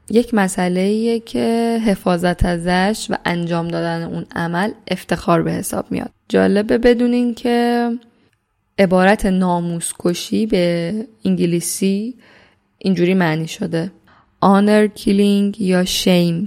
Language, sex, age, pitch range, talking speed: Persian, female, 10-29, 165-200 Hz, 100 wpm